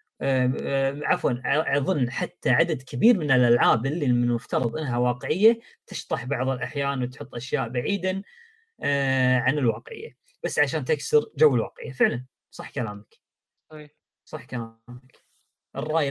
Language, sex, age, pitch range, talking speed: Arabic, female, 20-39, 130-200 Hz, 115 wpm